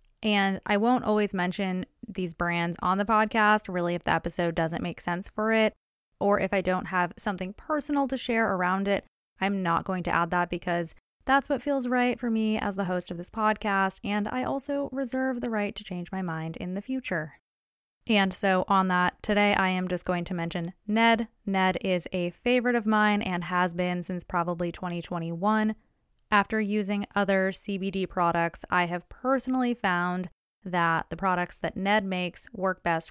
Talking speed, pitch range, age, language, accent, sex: 185 wpm, 180-220 Hz, 20-39, English, American, female